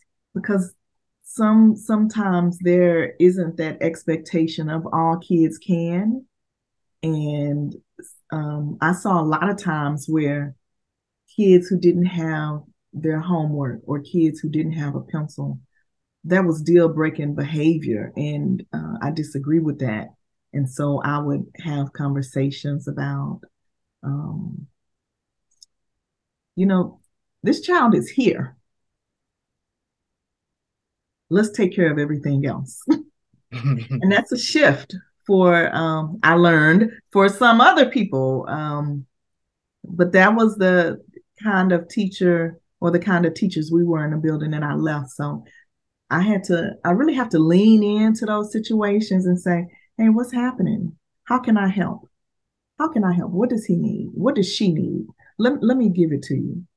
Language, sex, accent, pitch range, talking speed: English, female, American, 145-205 Hz, 145 wpm